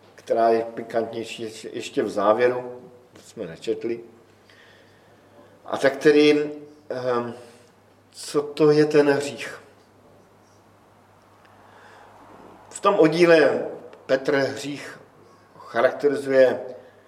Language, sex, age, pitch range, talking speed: Slovak, male, 50-69, 115-145 Hz, 80 wpm